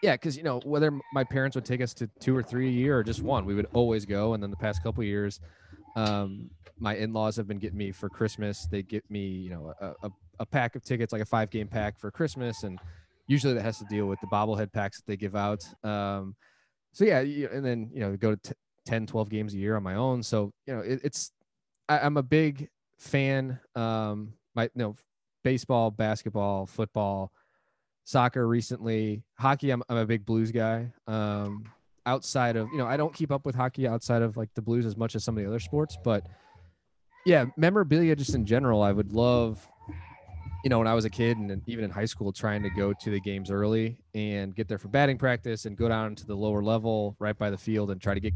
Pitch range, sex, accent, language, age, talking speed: 100-125 Hz, male, American, English, 20-39, 235 wpm